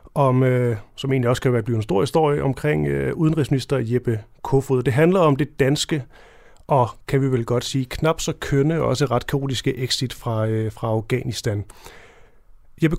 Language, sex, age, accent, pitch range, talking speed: Danish, male, 30-49, native, 120-150 Hz, 195 wpm